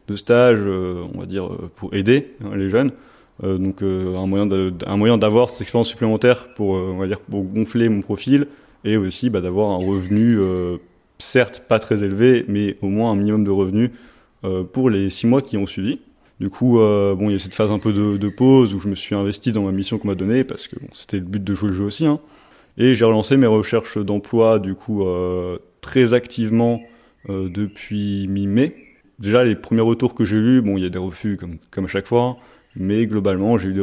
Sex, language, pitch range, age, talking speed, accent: male, French, 100-115 Hz, 20-39, 235 wpm, French